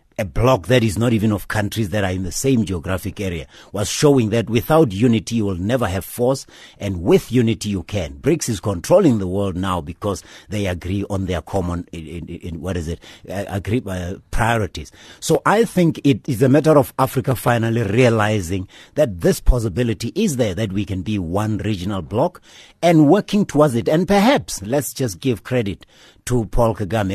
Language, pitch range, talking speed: English, 100-125 Hz, 195 wpm